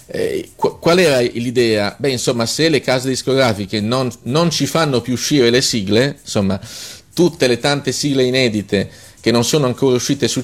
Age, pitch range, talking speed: 40-59, 105-130 Hz, 165 wpm